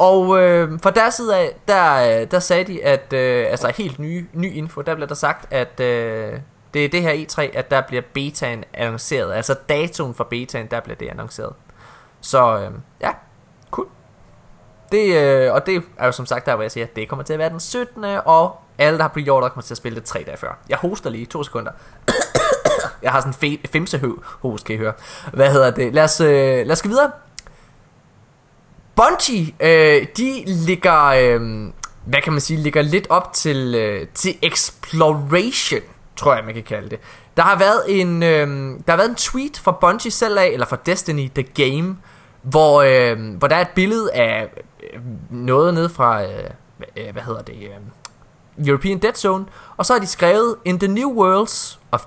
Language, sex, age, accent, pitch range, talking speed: Danish, male, 20-39, native, 120-175 Hz, 200 wpm